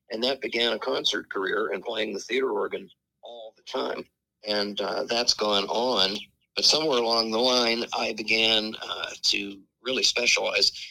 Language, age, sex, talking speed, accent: English, 50-69, male, 165 wpm, American